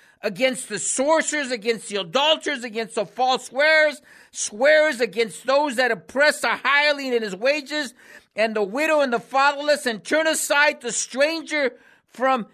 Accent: American